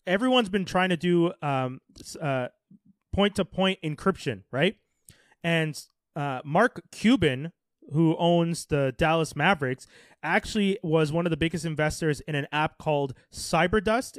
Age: 20-39